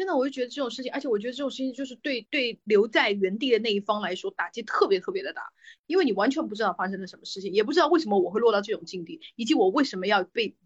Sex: female